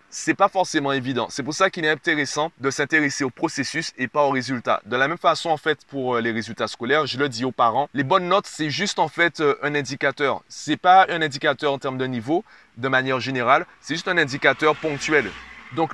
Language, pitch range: French, 130-160 Hz